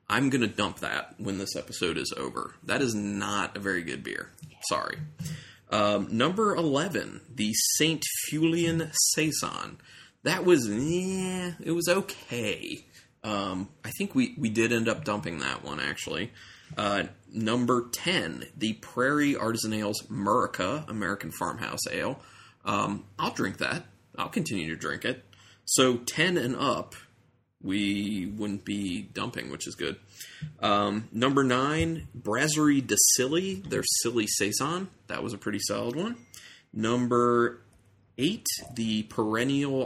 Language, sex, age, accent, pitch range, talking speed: English, male, 30-49, American, 105-140 Hz, 140 wpm